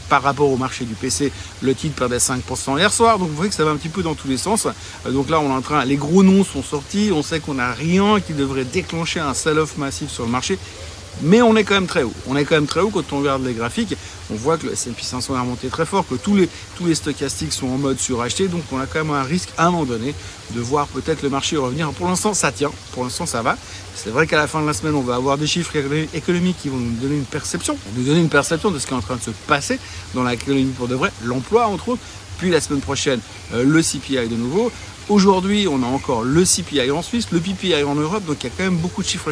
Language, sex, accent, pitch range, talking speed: French, male, French, 125-170 Hz, 280 wpm